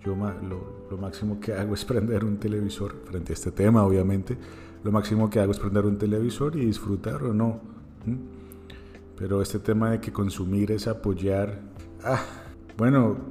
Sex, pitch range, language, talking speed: male, 90-105 Hz, Spanish, 170 wpm